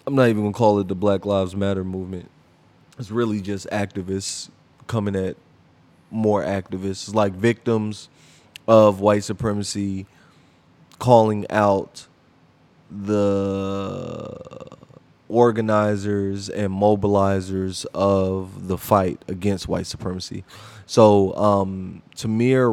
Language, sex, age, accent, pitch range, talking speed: English, male, 20-39, American, 95-115 Hz, 105 wpm